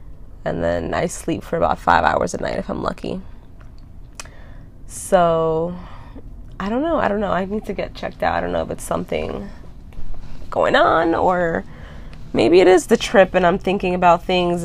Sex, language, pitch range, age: female, English, 155-190 Hz, 20-39